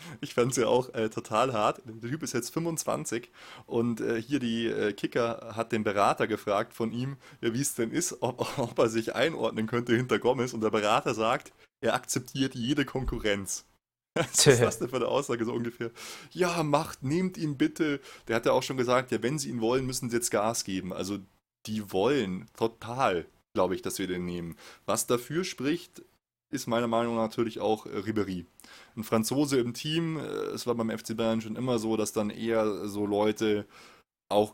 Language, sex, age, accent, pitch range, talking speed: German, male, 20-39, German, 105-120 Hz, 200 wpm